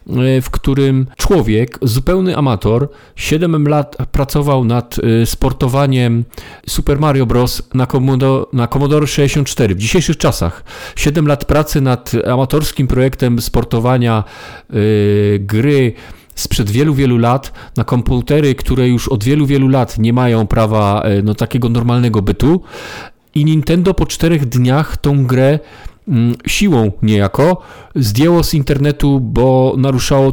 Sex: male